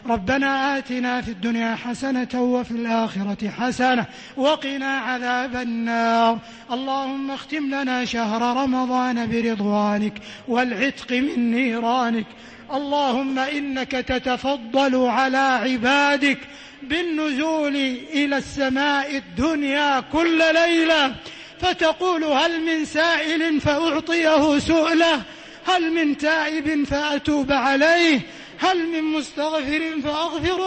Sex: male